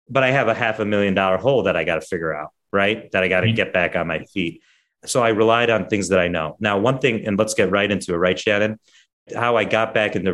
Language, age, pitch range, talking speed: English, 30-49, 95-110 Hz, 285 wpm